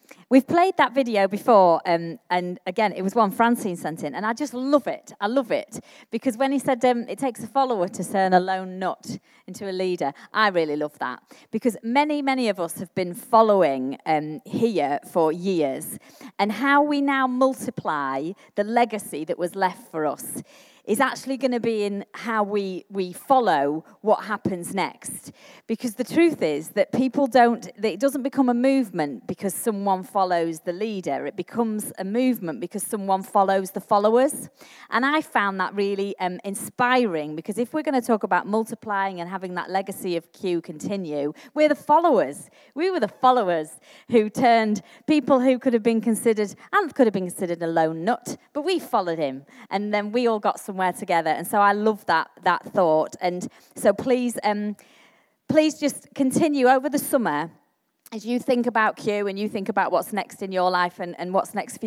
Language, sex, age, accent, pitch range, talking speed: English, female, 40-59, British, 185-250 Hz, 195 wpm